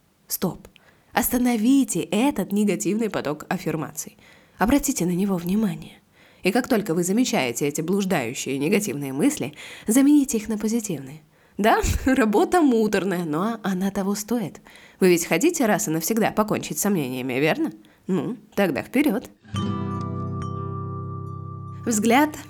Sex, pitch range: female, 170-270 Hz